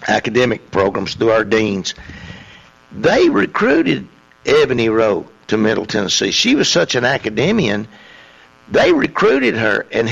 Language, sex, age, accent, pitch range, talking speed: English, male, 60-79, American, 100-150 Hz, 125 wpm